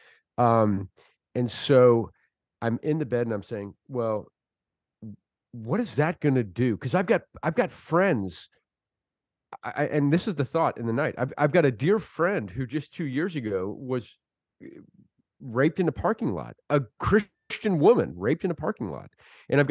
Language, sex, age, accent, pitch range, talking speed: English, male, 40-59, American, 115-165 Hz, 180 wpm